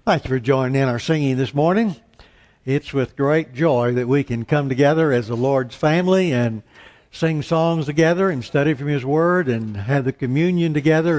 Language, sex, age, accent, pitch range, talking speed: English, male, 60-79, American, 130-170 Hz, 190 wpm